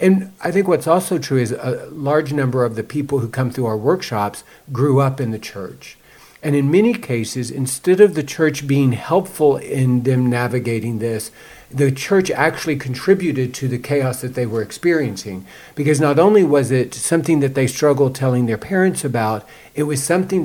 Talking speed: 190 wpm